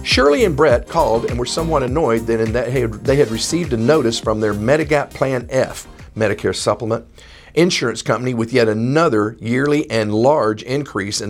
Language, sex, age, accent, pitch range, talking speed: English, male, 50-69, American, 110-150 Hz, 165 wpm